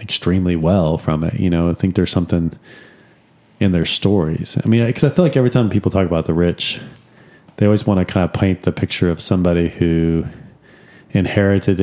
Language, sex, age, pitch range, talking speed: English, male, 30-49, 85-105 Hz, 200 wpm